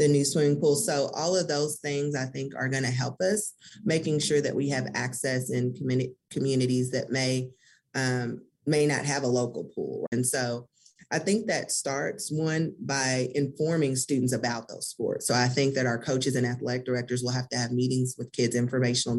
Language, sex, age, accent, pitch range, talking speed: English, female, 30-49, American, 120-140 Hz, 195 wpm